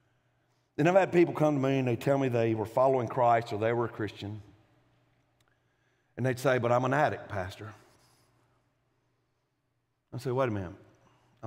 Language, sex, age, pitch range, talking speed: English, male, 50-69, 120-190 Hz, 170 wpm